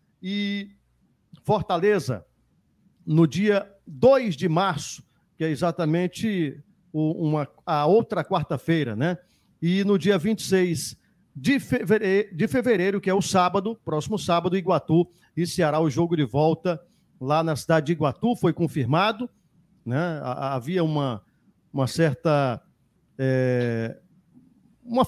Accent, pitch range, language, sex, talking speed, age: Brazilian, 155-200 Hz, Portuguese, male, 115 wpm, 50-69